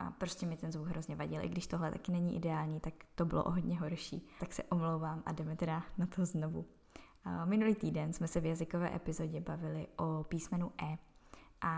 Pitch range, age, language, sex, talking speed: 160-180 Hz, 20-39, Czech, female, 205 wpm